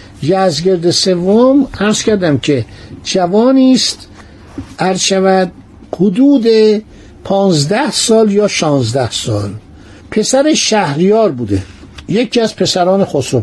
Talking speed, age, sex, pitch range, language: 95 wpm, 60-79, male, 155-215 Hz, Persian